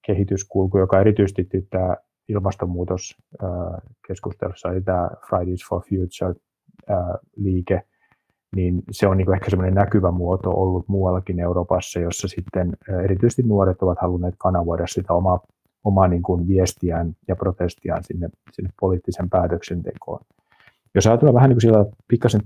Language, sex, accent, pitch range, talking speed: Finnish, male, native, 90-105 Hz, 125 wpm